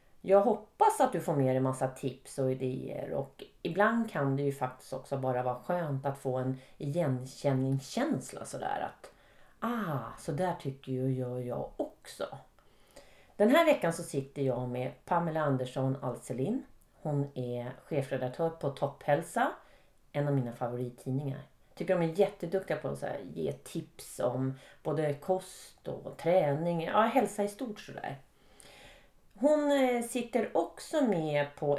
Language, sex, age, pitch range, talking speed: Swedish, female, 30-49, 130-190 Hz, 150 wpm